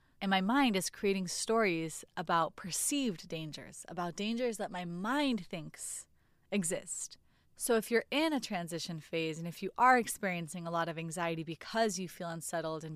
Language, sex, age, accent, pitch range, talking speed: English, female, 20-39, American, 165-205 Hz, 170 wpm